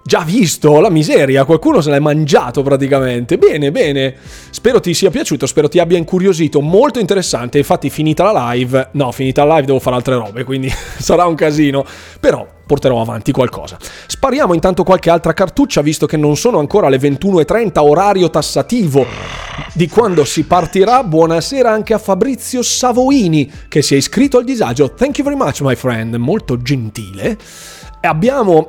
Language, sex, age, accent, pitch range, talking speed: Italian, male, 30-49, native, 135-170 Hz, 165 wpm